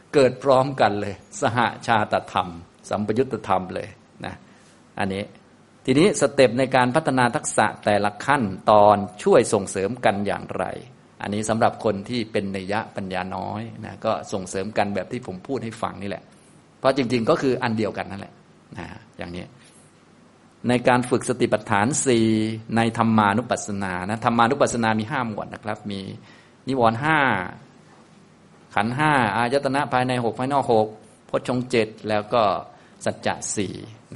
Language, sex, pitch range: Thai, male, 105-125 Hz